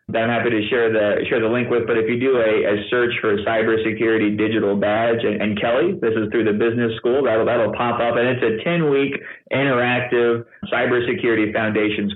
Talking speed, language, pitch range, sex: 210 wpm, English, 110-125 Hz, male